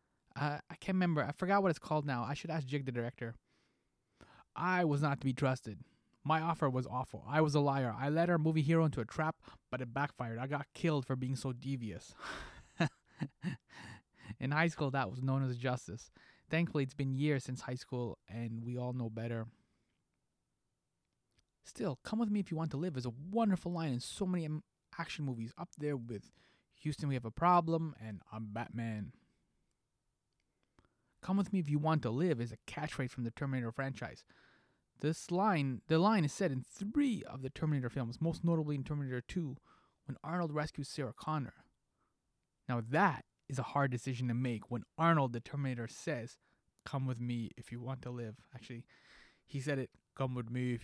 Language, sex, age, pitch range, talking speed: English, male, 20-39, 120-160 Hz, 190 wpm